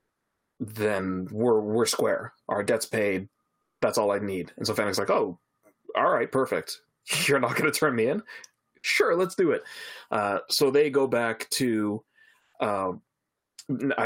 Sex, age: male, 20-39